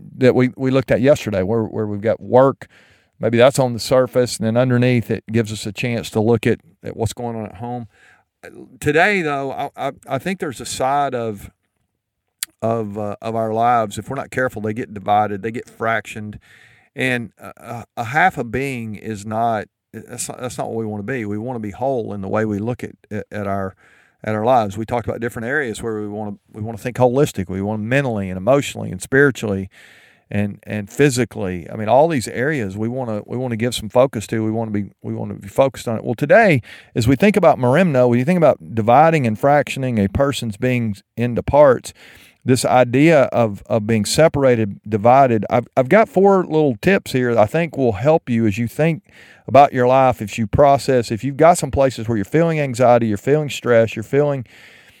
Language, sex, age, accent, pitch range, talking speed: English, male, 50-69, American, 110-130 Hz, 225 wpm